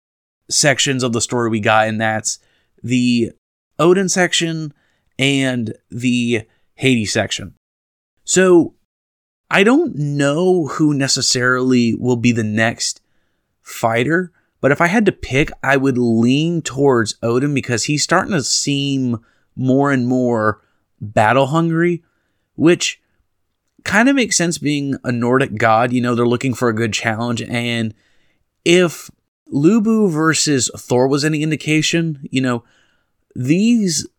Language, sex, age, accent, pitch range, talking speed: English, male, 30-49, American, 115-150 Hz, 130 wpm